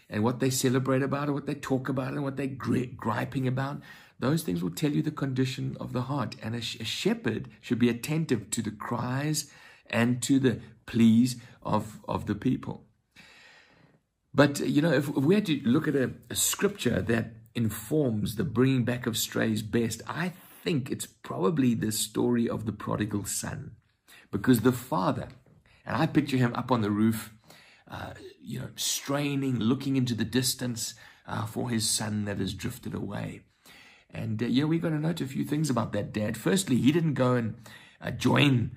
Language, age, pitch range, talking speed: English, 60-79, 110-140 Hz, 190 wpm